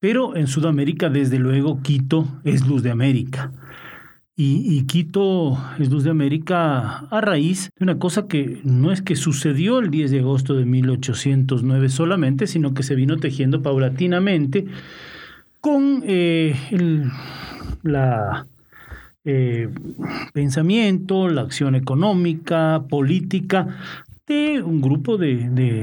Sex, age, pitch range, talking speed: male, 40-59, 130-160 Hz, 125 wpm